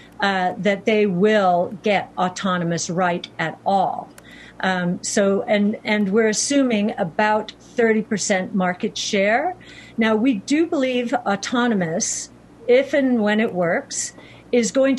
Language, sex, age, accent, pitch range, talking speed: English, female, 50-69, American, 185-225 Hz, 130 wpm